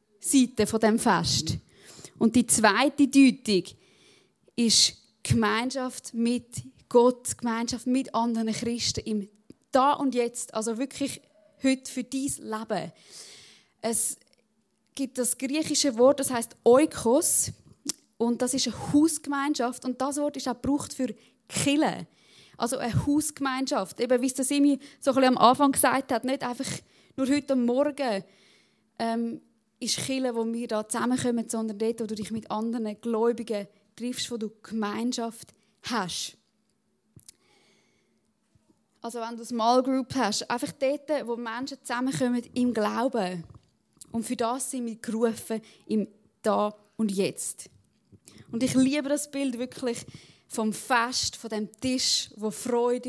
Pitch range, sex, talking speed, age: 220-265 Hz, female, 140 wpm, 20-39